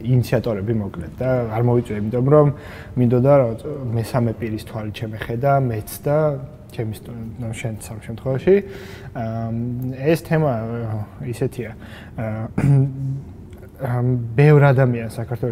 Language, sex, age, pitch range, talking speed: English, male, 20-39, 110-125 Hz, 45 wpm